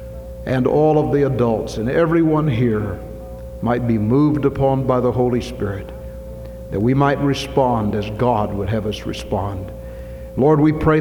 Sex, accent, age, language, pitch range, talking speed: male, American, 60-79, English, 105-140 Hz, 160 wpm